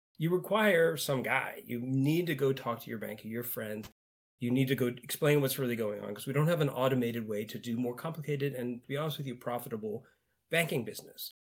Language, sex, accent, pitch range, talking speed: English, male, American, 115-140 Hz, 225 wpm